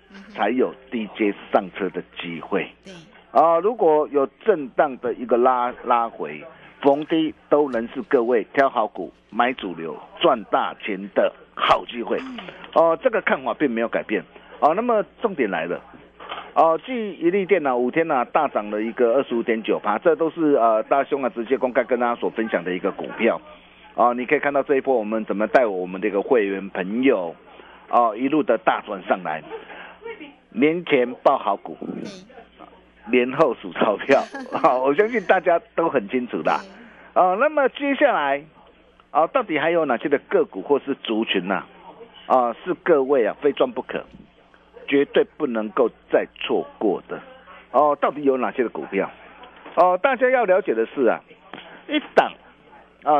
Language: Chinese